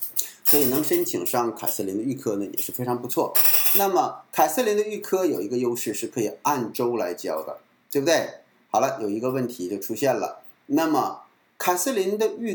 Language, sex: Chinese, male